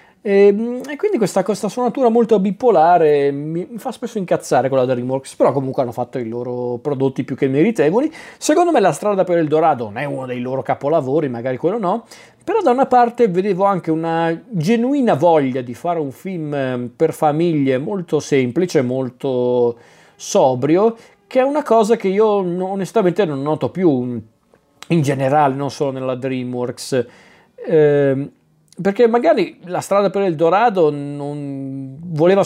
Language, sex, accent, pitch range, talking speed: Italian, male, native, 135-190 Hz, 160 wpm